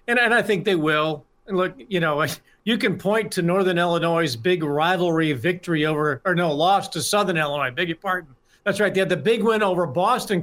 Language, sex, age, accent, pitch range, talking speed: English, male, 50-69, American, 155-190 Hz, 215 wpm